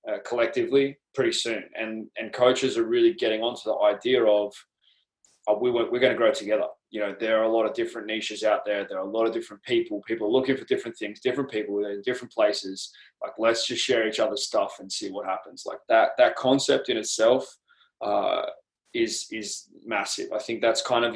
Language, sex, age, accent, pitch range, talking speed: English, male, 20-39, Australian, 105-130 Hz, 205 wpm